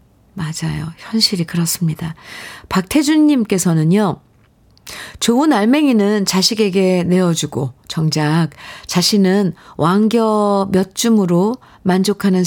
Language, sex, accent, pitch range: Korean, female, native, 160-215 Hz